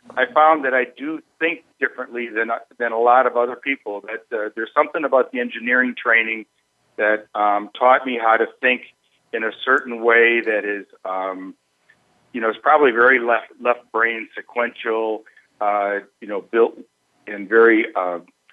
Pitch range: 110-135 Hz